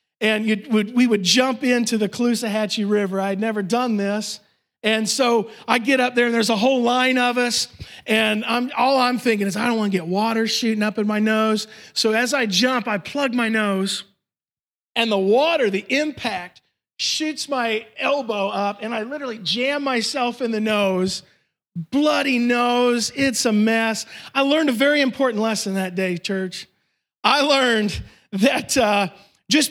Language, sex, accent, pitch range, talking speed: English, male, American, 205-250 Hz, 175 wpm